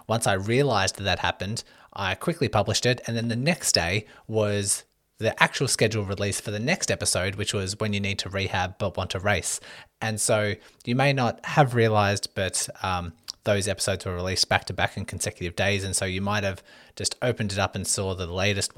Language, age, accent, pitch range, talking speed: English, 20-39, Australian, 95-115 Hz, 210 wpm